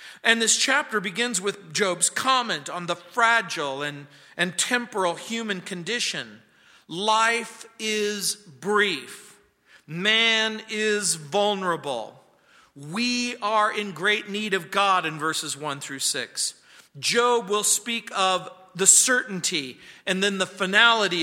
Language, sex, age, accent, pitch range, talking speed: English, male, 40-59, American, 155-215 Hz, 120 wpm